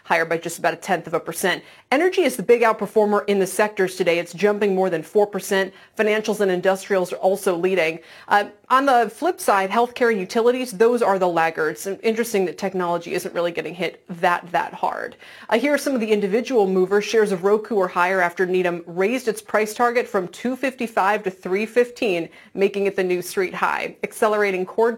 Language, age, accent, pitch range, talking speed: English, 30-49, American, 180-230 Hz, 200 wpm